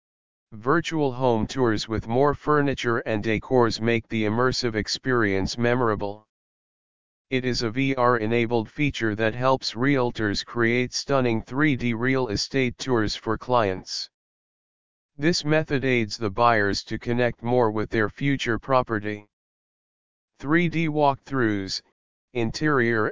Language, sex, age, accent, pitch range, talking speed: English, male, 40-59, American, 110-130 Hz, 115 wpm